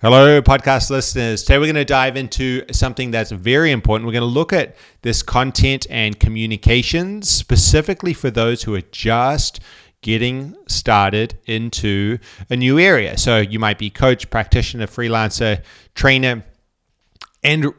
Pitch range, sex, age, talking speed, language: 105-130 Hz, male, 30-49, 140 wpm, English